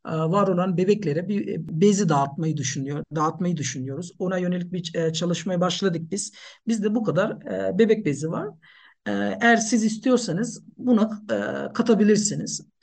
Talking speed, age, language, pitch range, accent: 120 wpm, 50-69, Turkish, 160-210 Hz, native